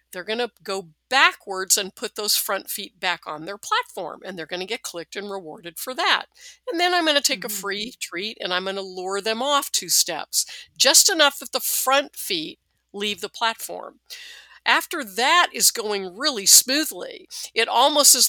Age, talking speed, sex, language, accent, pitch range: 50-69, 195 wpm, female, English, American, 190-270 Hz